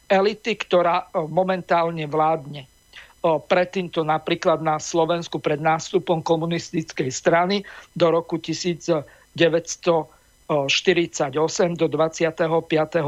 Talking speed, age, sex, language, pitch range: 80 wpm, 50-69, male, Slovak, 165-190 Hz